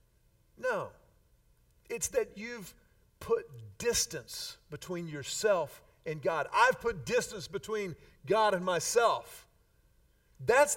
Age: 50-69